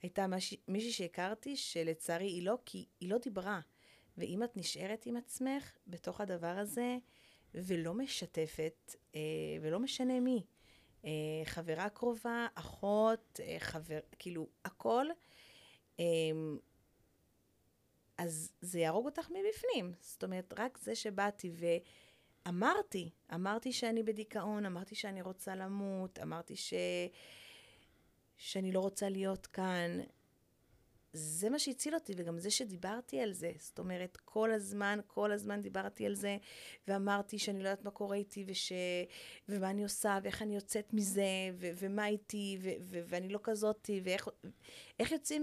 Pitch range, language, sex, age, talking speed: 175-240 Hz, Hebrew, female, 30-49, 130 wpm